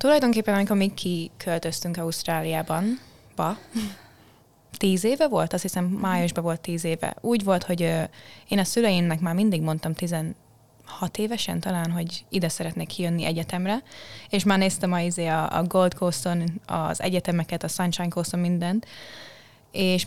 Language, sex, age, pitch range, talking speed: Hungarian, female, 20-39, 165-200 Hz, 135 wpm